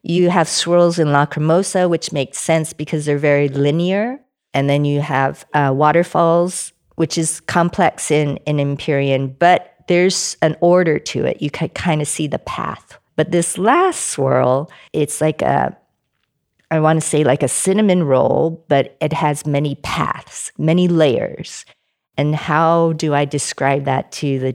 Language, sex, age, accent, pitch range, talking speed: English, female, 50-69, American, 135-160 Hz, 165 wpm